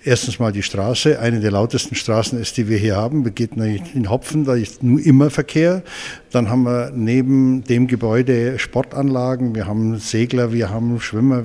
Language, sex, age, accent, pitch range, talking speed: German, male, 60-79, German, 105-135 Hz, 185 wpm